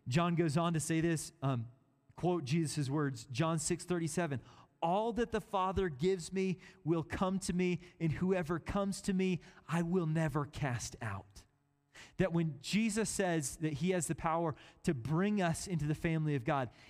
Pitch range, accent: 140-175 Hz, American